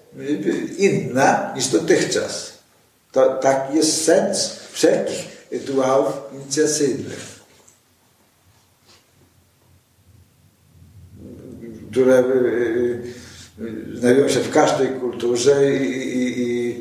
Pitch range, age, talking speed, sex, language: 120-155 Hz, 50-69, 70 wpm, male, Polish